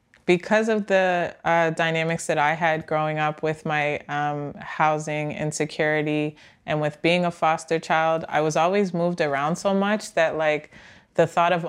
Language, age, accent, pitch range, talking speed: English, 20-39, American, 150-175 Hz, 170 wpm